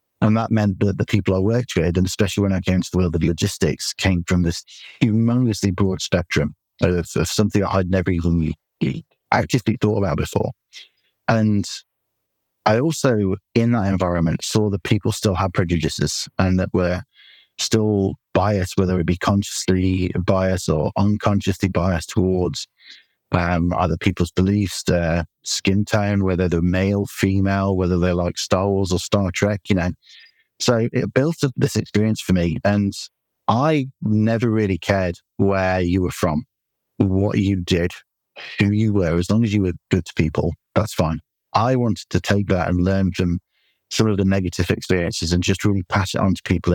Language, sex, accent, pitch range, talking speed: English, male, British, 90-105 Hz, 175 wpm